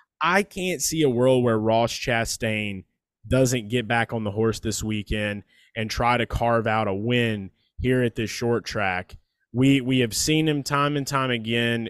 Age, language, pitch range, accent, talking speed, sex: 20-39, English, 115-140 Hz, American, 185 wpm, male